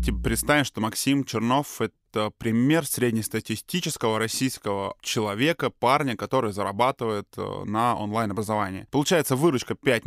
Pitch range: 110-135 Hz